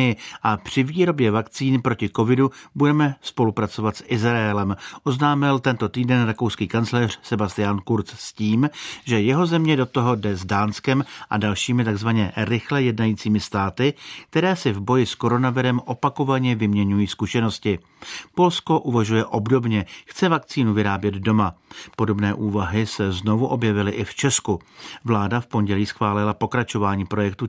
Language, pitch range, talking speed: Czech, 105-125 Hz, 140 wpm